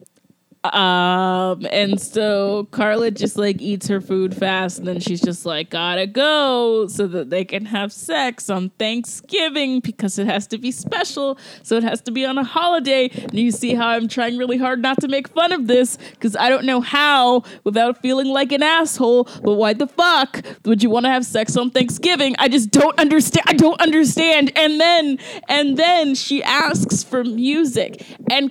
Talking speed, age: 190 wpm, 20-39